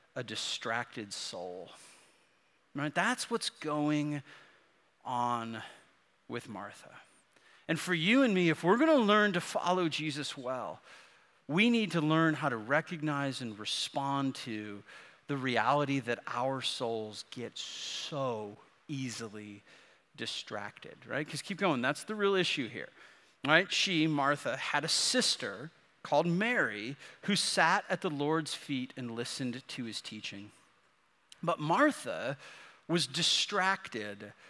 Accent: American